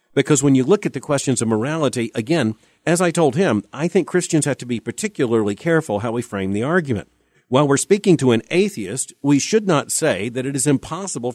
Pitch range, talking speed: 115-160 Hz, 215 wpm